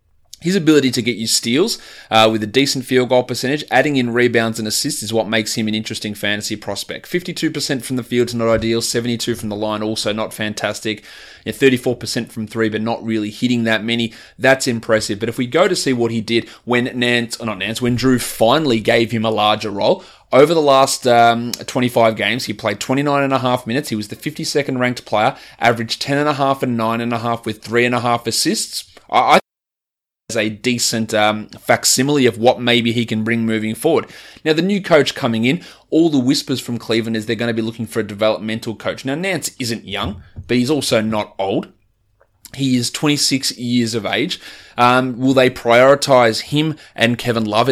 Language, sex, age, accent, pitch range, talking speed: English, male, 20-39, Australian, 110-130 Hz, 210 wpm